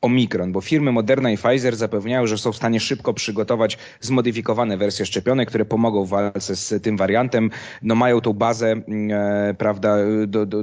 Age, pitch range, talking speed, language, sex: 30-49, 110-135 Hz, 170 wpm, Polish, male